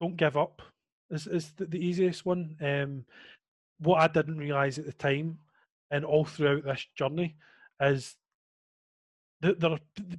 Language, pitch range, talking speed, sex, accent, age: English, 135-160 Hz, 140 wpm, male, British, 30-49